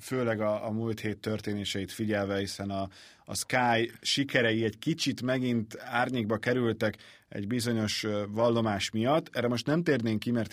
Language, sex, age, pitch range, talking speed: Hungarian, male, 30-49, 100-120 Hz, 155 wpm